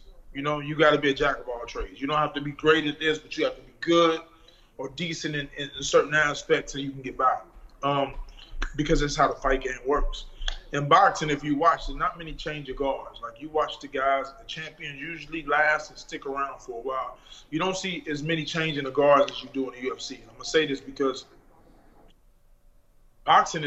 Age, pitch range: 20-39, 140-160 Hz